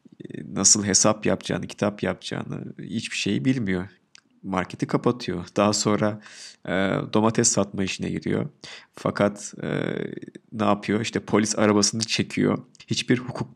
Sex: male